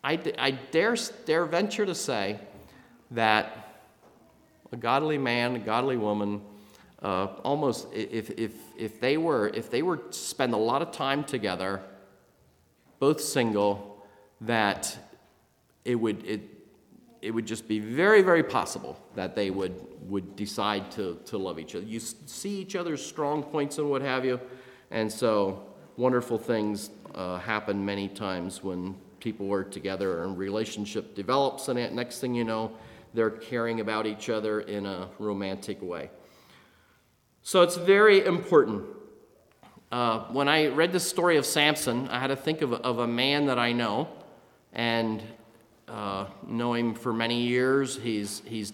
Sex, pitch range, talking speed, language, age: male, 100-130 Hz, 155 wpm, English, 40-59